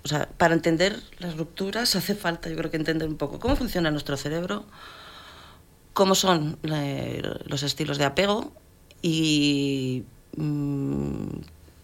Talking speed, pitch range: 130 wpm, 130-160 Hz